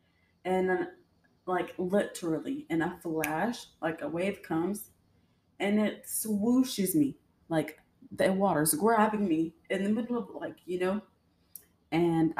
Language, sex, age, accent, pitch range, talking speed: English, female, 20-39, American, 150-190 Hz, 135 wpm